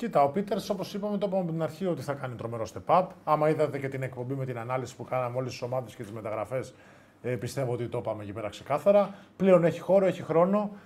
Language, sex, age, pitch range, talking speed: Greek, male, 20-39, 130-180 Hz, 230 wpm